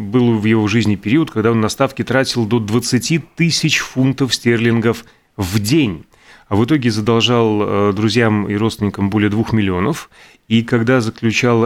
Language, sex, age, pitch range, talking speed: Russian, male, 30-49, 105-130 Hz, 155 wpm